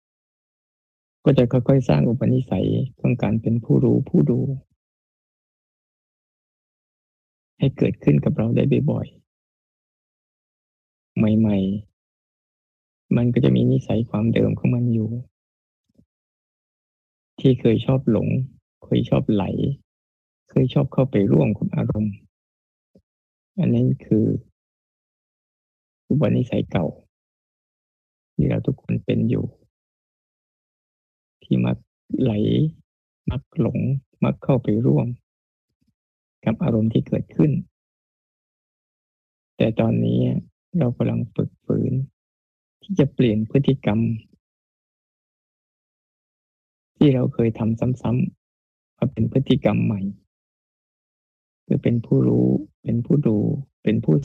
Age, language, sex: 20-39, Thai, male